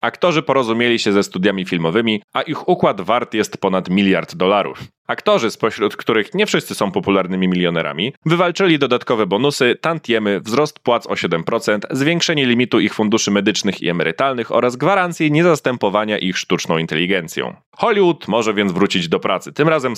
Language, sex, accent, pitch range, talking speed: Polish, male, native, 100-150 Hz, 155 wpm